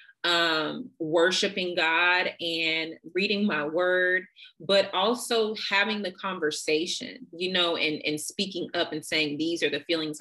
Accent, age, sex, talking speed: American, 30-49, female, 140 wpm